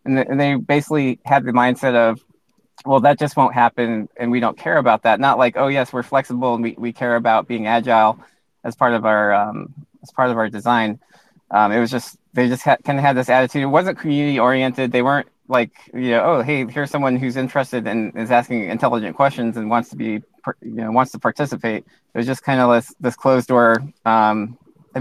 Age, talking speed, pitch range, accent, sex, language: 20-39, 225 wpm, 115-135 Hz, American, male, English